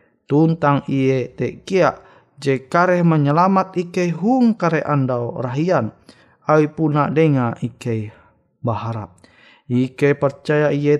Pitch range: 130-175 Hz